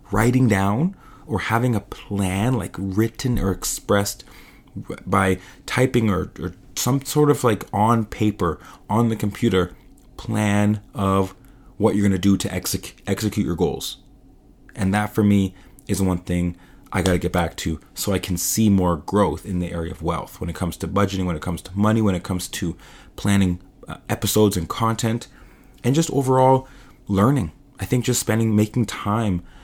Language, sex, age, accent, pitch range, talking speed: English, male, 30-49, American, 90-115 Hz, 175 wpm